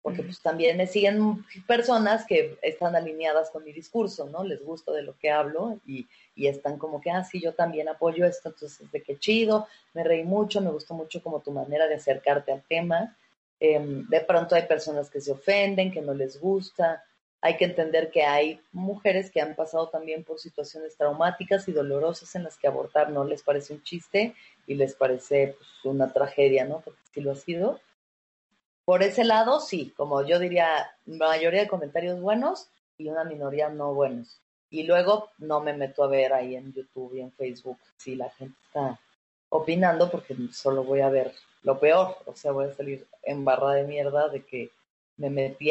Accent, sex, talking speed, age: Mexican, female, 195 wpm, 30-49